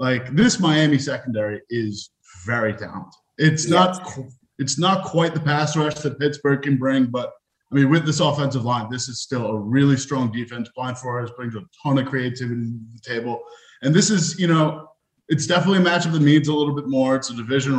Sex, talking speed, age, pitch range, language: male, 210 wpm, 20-39, 120-150 Hz, English